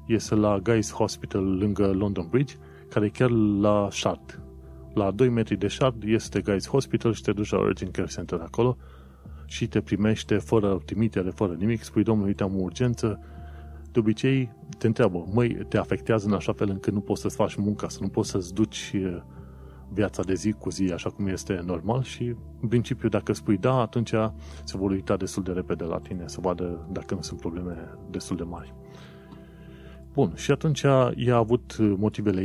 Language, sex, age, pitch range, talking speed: Romanian, male, 30-49, 85-110 Hz, 185 wpm